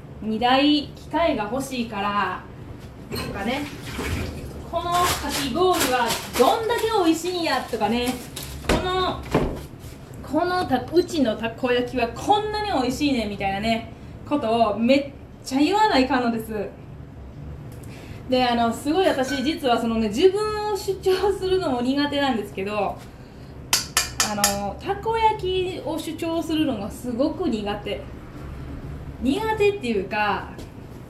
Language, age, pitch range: Japanese, 20-39, 200-330 Hz